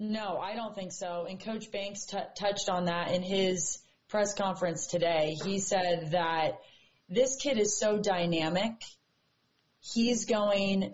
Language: English